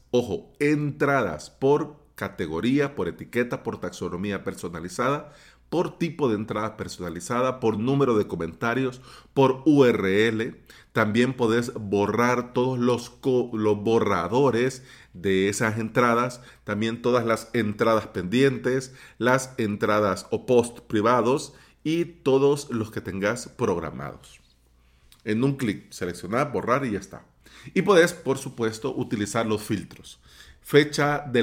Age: 40-59